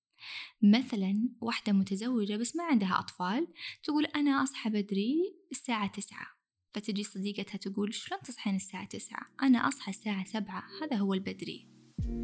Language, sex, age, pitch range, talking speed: Arabic, female, 20-39, 195-245 Hz, 130 wpm